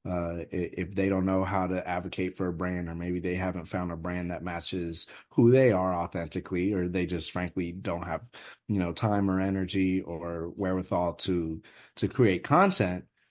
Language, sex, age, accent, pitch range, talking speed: English, male, 30-49, American, 85-105 Hz, 185 wpm